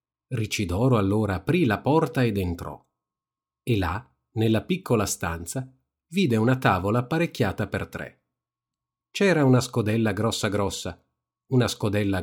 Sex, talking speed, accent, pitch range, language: male, 125 wpm, native, 95-130 Hz, Italian